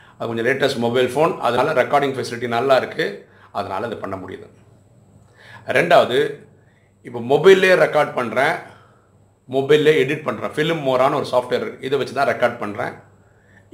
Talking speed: 135 wpm